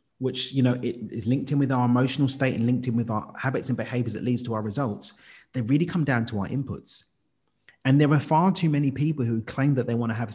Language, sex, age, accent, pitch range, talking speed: English, male, 30-49, British, 110-145 Hz, 260 wpm